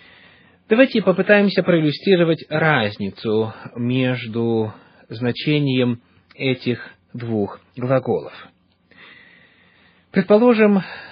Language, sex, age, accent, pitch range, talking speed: Russian, male, 30-49, native, 115-165 Hz, 55 wpm